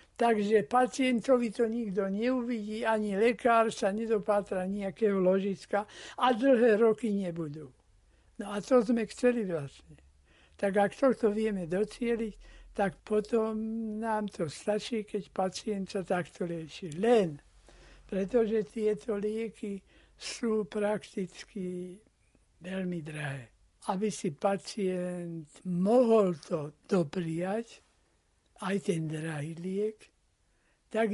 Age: 60-79